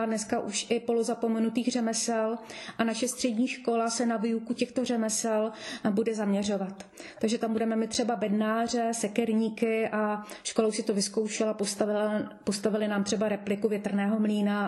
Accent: native